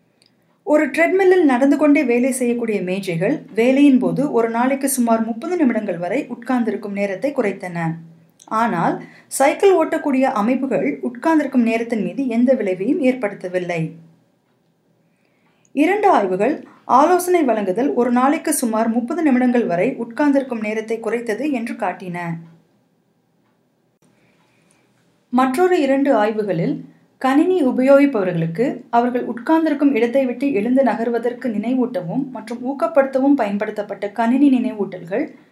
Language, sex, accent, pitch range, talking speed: Tamil, female, native, 205-275 Hz, 95 wpm